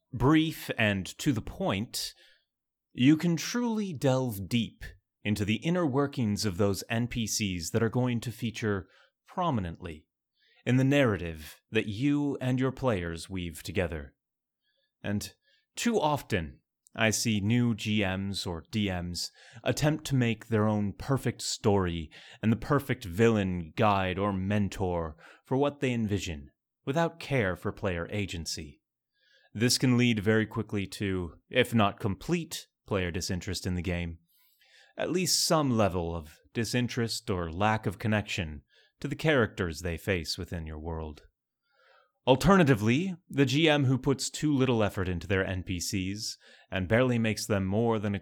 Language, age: English, 30-49